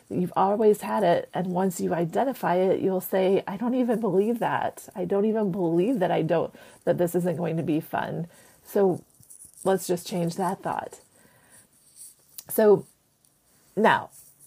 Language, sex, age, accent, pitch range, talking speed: English, female, 30-49, American, 170-205 Hz, 160 wpm